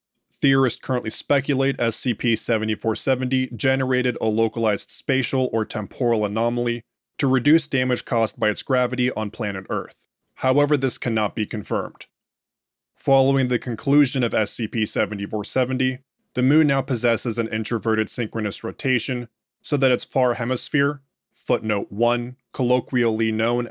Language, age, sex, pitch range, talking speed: English, 20-39, male, 110-130 Hz, 120 wpm